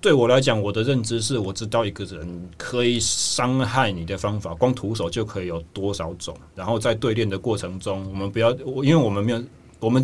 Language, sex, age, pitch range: Chinese, male, 30-49, 100-125 Hz